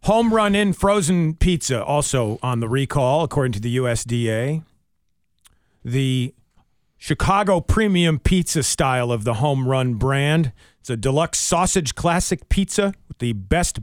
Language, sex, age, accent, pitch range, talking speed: English, male, 40-59, American, 125-180 Hz, 140 wpm